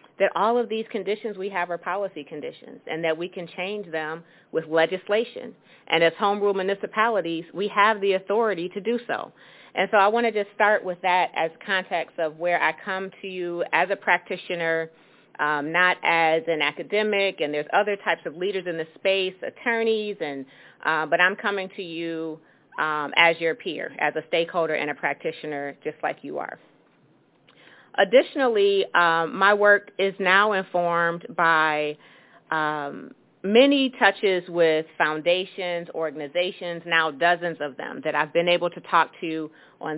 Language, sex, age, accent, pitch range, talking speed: English, female, 40-59, American, 165-200 Hz, 170 wpm